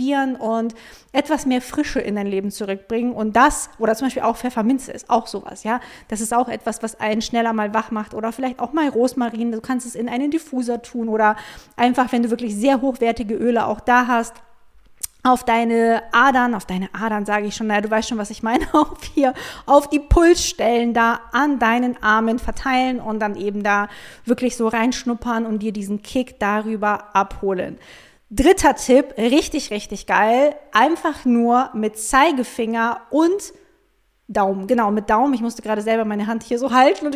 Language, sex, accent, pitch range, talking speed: German, female, German, 220-265 Hz, 185 wpm